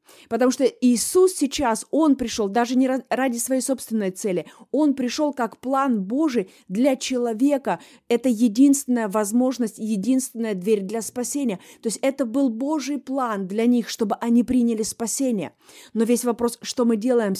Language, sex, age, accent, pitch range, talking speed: Russian, female, 20-39, native, 225-275 Hz, 150 wpm